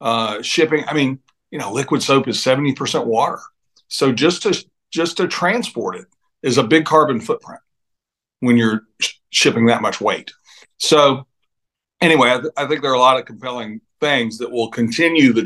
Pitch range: 115-145 Hz